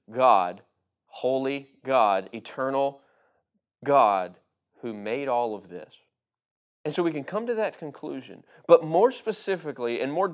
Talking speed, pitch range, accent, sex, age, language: 135 wpm, 125-180 Hz, American, male, 30-49, English